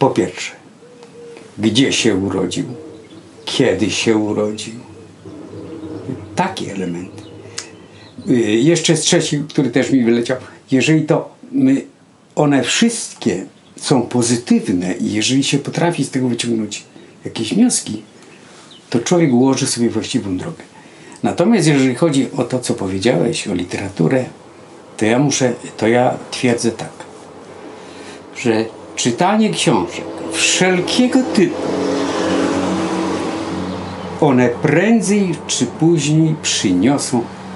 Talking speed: 100 wpm